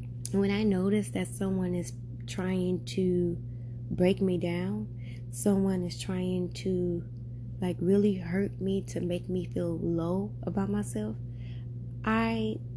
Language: English